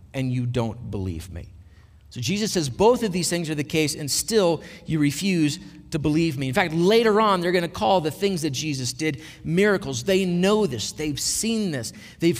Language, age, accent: English, 50-69, American